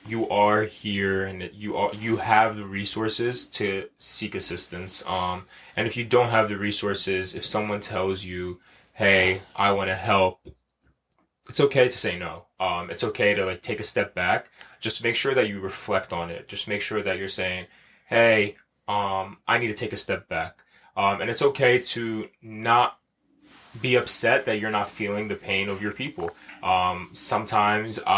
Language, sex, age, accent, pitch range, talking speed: English, male, 20-39, American, 95-110 Hz, 180 wpm